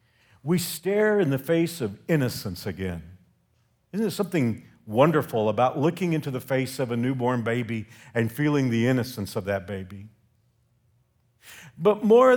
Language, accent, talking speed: English, American, 145 wpm